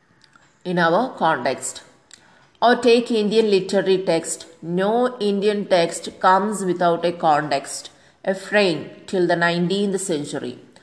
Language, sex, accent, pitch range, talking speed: English, female, Indian, 175-205 Hz, 115 wpm